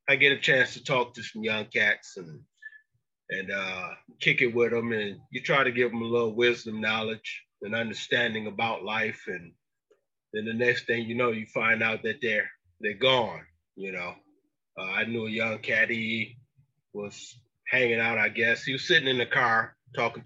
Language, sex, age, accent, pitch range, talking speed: English, male, 30-49, American, 110-130 Hz, 195 wpm